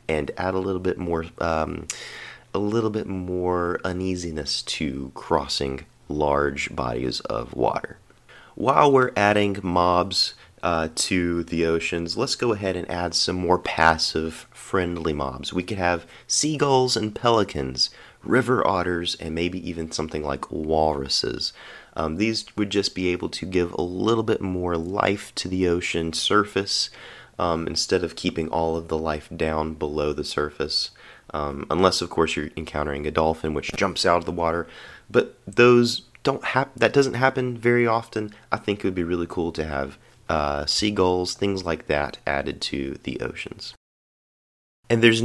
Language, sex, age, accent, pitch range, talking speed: English, male, 30-49, American, 80-100 Hz, 160 wpm